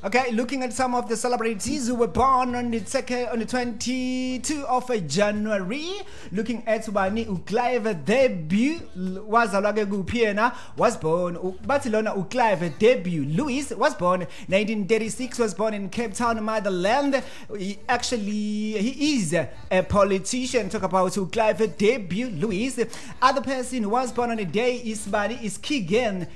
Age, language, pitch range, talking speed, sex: 30-49, English, 195-245 Hz, 140 wpm, male